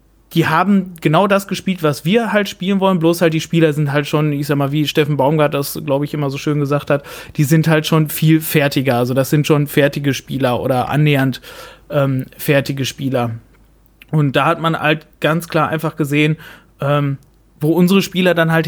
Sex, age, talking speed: male, 30-49, 200 wpm